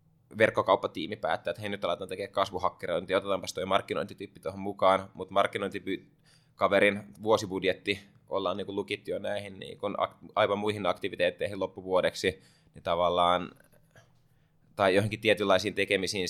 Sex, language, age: male, Finnish, 20-39